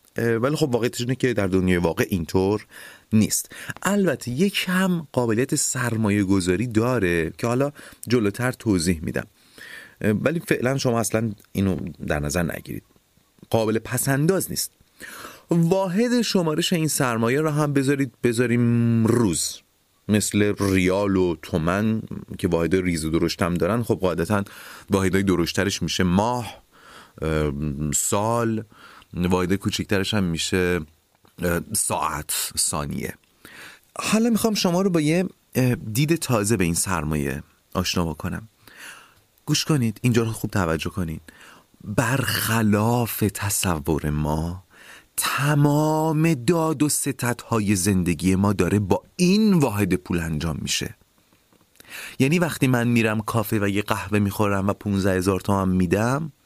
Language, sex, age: Persian, male, 30-49